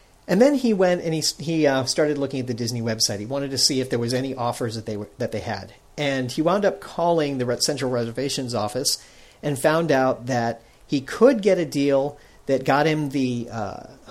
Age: 40-59